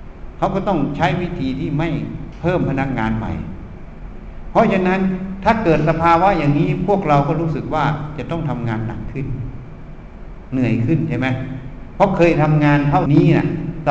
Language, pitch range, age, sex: Thai, 125-165 Hz, 60-79, male